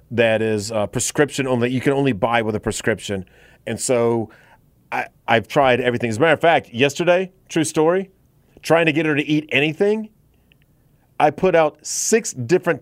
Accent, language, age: American, English, 40-59